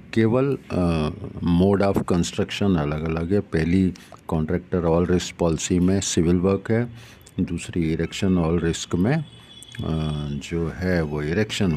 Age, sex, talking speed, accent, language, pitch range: 50-69, male, 135 wpm, native, Hindi, 80-100 Hz